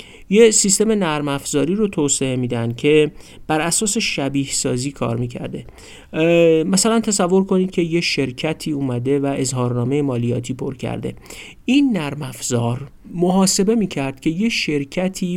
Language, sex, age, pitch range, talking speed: Persian, male, 50-69, 130-180 Hz, 140 wpm